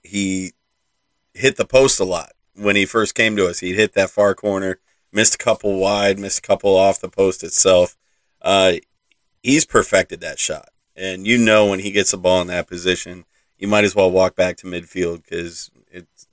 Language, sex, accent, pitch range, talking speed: English, male, American, 90-105 Hz, 200 wpm